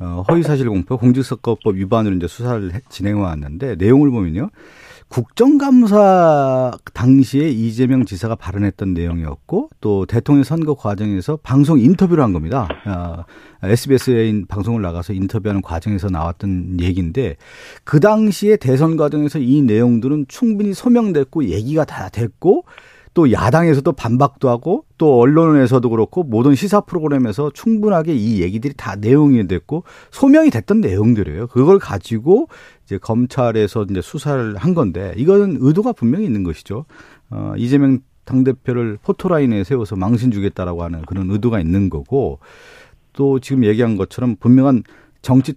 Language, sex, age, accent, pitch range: Korean, male, 40-59, native, 100-145 Hz